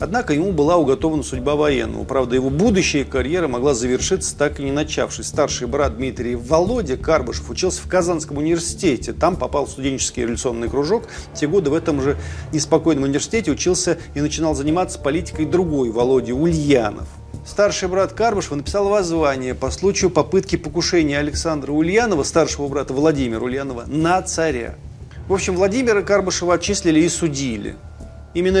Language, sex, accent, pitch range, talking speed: Russian, male, native, 135-180 Hz, 150 wpm